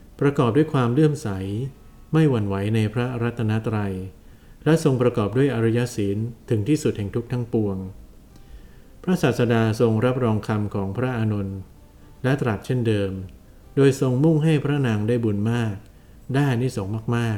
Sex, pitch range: male, 100-120 Hz